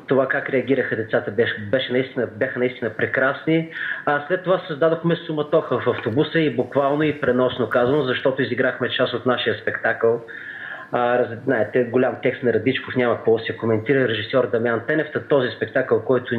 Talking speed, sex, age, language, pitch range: 160 wpm, male, 30-49, Bulgarian, 115-140 Hz